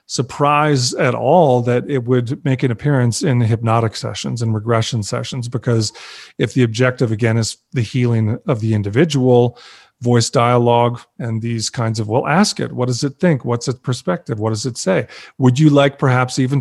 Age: 30-49